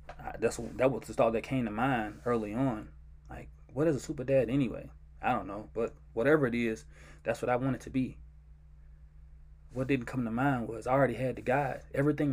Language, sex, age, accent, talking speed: English, male, 20-39, American, 215 wpm